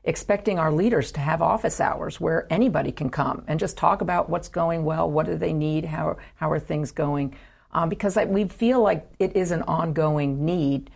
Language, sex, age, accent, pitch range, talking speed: English, female, 50-69, American, 135-165 Hz, 210 wpm